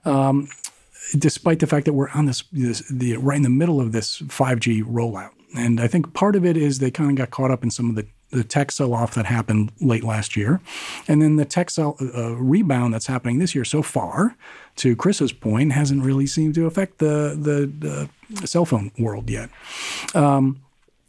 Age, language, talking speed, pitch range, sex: 40-59, English, 205 wpm, 120-145 Hz, male